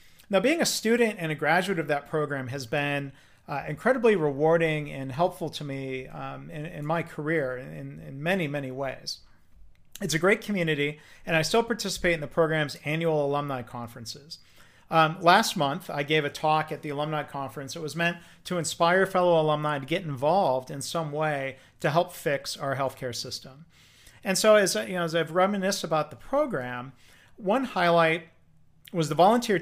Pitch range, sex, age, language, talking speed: 140-175 Hz, male, 40-59, English, 175 wpm